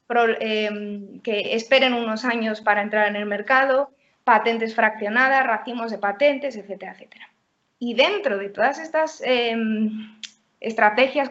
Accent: Spanish